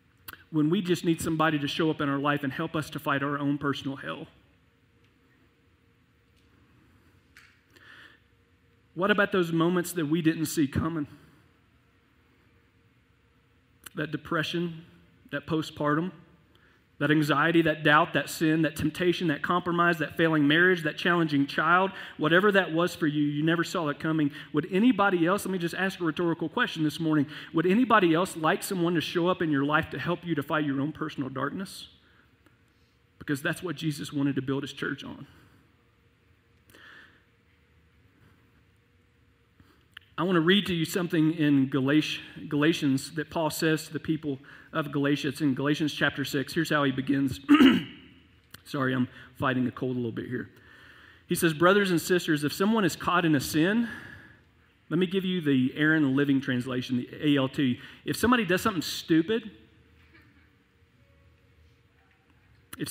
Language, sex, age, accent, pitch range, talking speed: English, male, 40-59, American, 125-170 Hz, 155 wpm